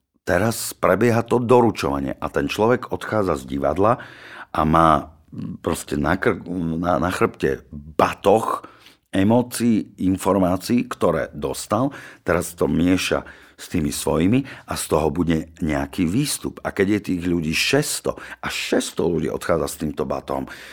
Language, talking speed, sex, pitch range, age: Slovak, 140 wpm, male, 80-100 Hz, 50-69